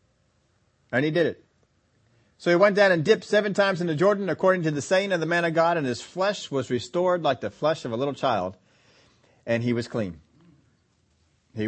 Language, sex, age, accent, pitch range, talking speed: English, male, 40-59, American, 110-140 Hz, 210 wpm